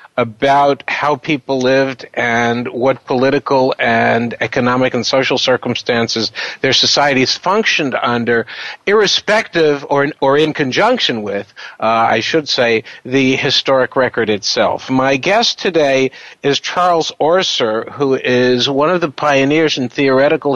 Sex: male